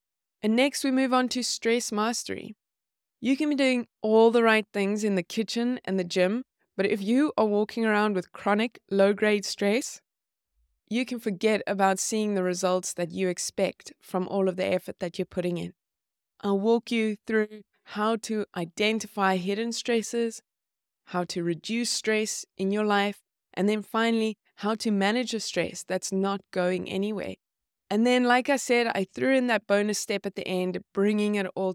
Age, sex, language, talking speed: 20-39, female, English, 180 wpm